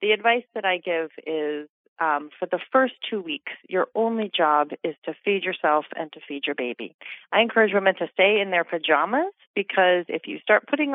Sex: female